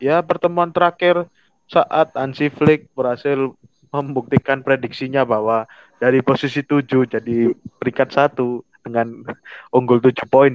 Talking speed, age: 115 wpm, 20-39